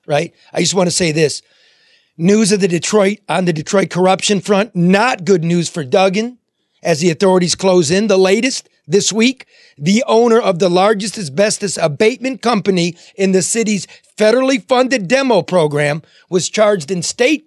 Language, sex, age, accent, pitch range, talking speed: English, male, 30-49, American, 170-215 Hz, 170 wpm